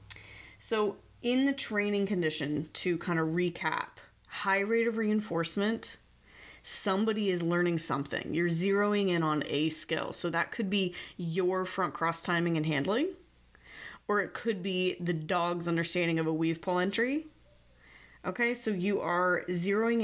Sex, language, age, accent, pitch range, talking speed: female, English, 30-49, American, 160-195 Hz, 150 wpm